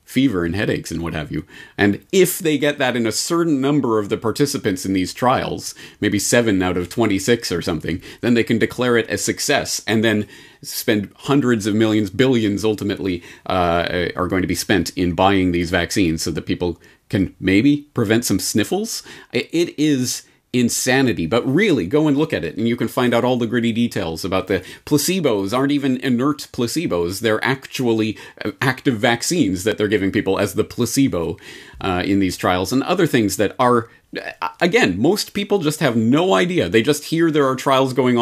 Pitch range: 100-130 Hz